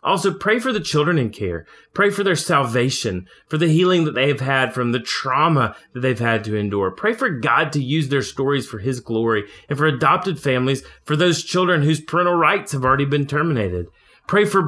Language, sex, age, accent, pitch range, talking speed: English, male, 30-49, American, 120-165 Hz, 210 wpm